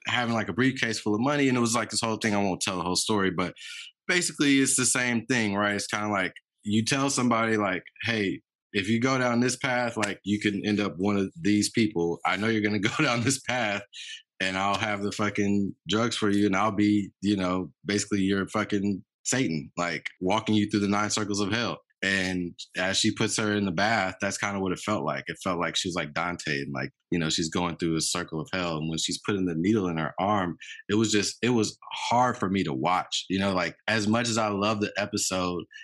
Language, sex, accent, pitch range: English, male, American, 95-110 Hz